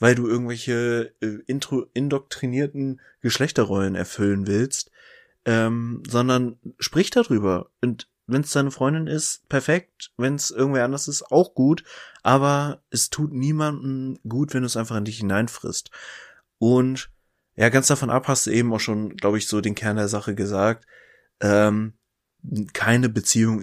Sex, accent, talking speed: male, German, 150 wpm